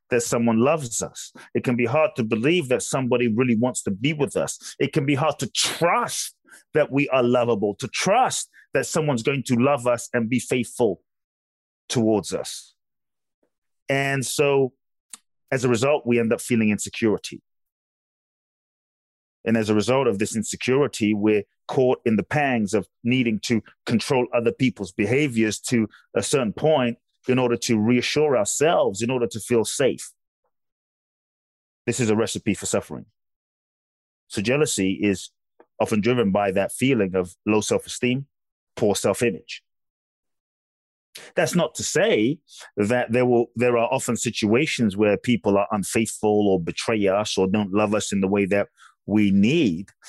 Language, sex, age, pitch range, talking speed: English, male, 30-49, 105-125 Hz, 155 wpm